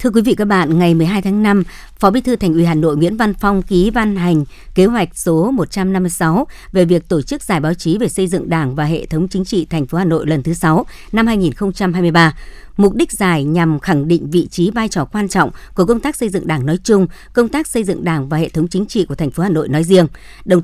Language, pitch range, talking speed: Vietnamese, 165-205 Hz, 260 wpm